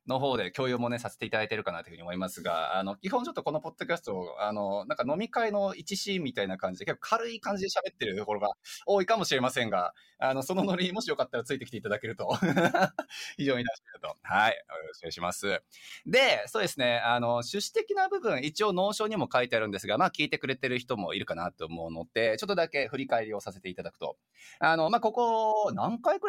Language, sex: Japanese, male